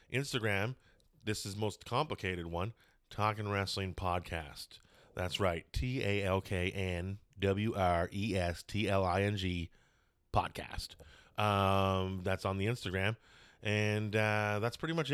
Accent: American